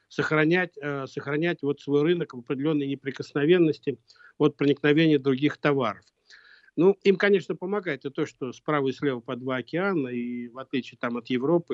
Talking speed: 165 wpm